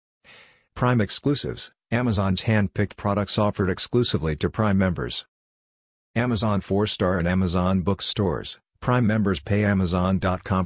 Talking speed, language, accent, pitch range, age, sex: 120 wpm, English, American, 90-105 Hz, 50-69, male